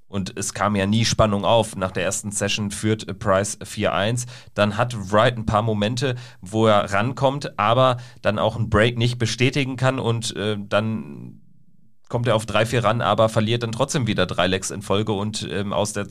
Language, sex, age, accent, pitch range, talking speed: German, male, 40-59, German, 100-120 Hz, 195 wpm